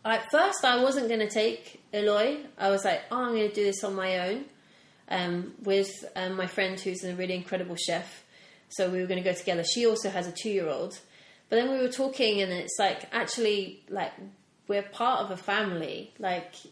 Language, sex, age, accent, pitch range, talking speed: English, female, 30-49, British, 175-205 Hz, 210 wpm